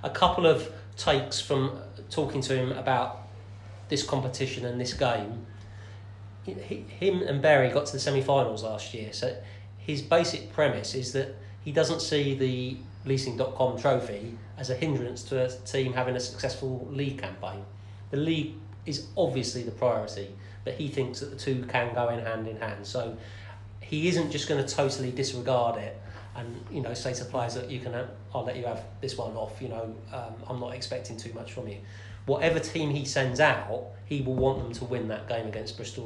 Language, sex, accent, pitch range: English, male, British, 105-135 Hz